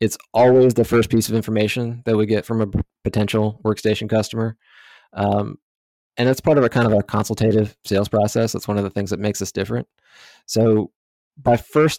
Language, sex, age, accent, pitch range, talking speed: English, male, 20-39, American, 105-120 Hz, 195 wpm